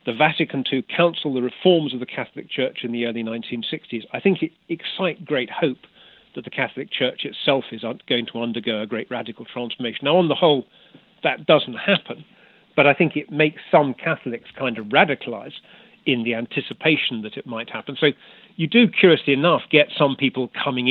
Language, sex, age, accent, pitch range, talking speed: English, male, 40-59, British, 115-155 Hz, 190 wpm